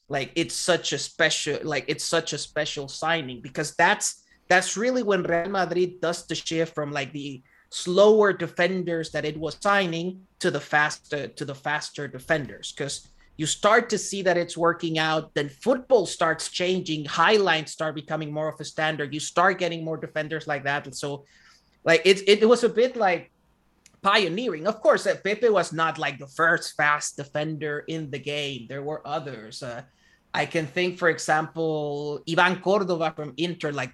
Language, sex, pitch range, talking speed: English, male, 150-185 Hz, 185 wpm